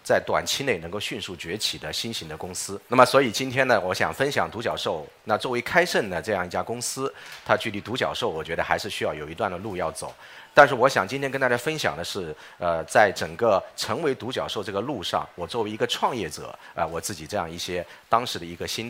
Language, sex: Chinese, male